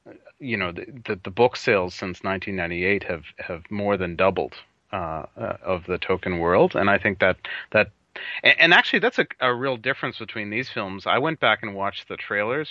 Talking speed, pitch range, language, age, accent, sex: 195 wpm, 90-110 Hz, English, 30-49, American, male